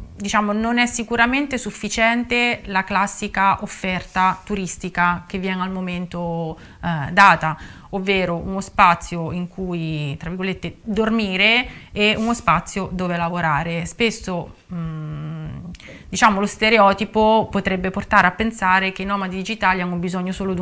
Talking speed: 130 wpm